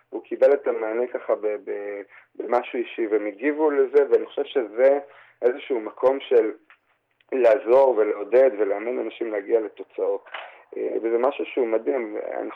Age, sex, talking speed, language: 30-49, male, 140 wpm, Hebrew